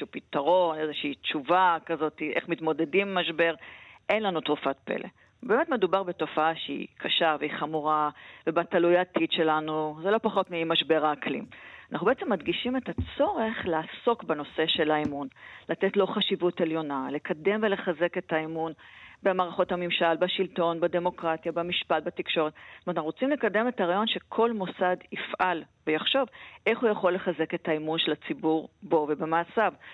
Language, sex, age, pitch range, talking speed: Hebrew, female, 40-59, 160-200 Hz, 140 wpm